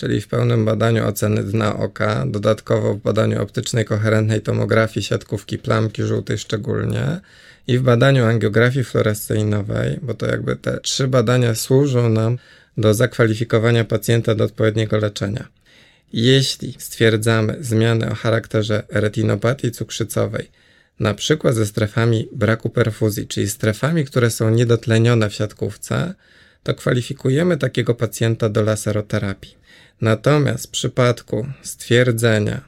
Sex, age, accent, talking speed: male, 20-39, native, 120 wpm